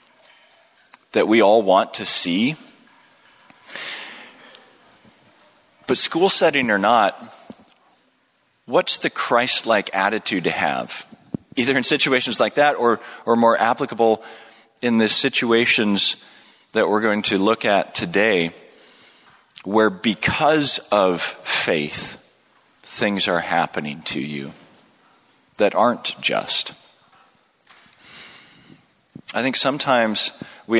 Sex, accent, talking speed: male, American, 100 wpm